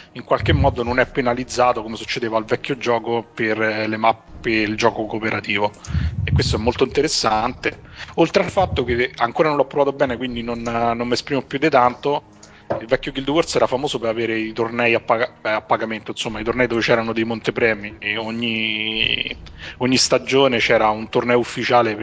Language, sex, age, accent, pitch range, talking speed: Italian, male, 30-49, native, 105-120 Hz, 185 wpm